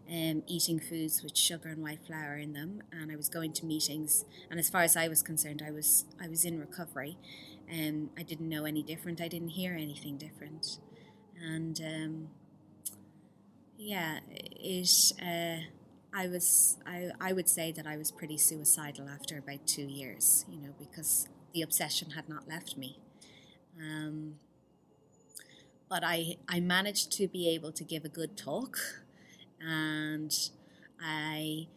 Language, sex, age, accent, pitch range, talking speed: English, female, 20-39, Irish, 155-180 Hz, 160 wpm